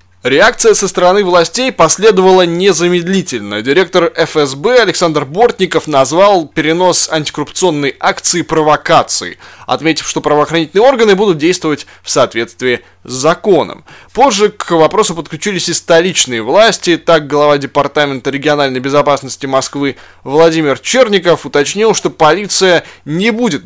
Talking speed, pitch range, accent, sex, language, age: 115 wpm, 145-185 Hz, native, male, Russian, 20-39